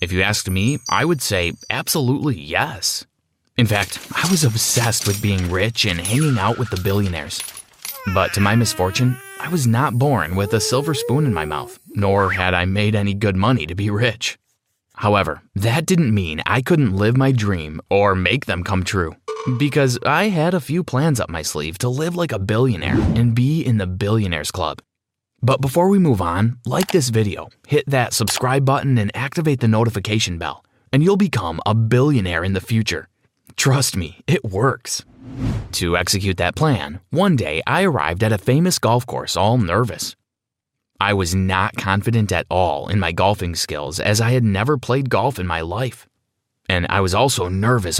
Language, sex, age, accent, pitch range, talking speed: English, male, 30-49, American, 95-130 Hz, 190 wpm